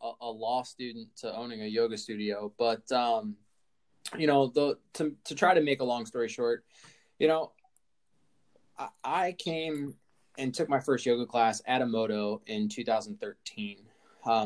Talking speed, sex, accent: 155 wpm, male, American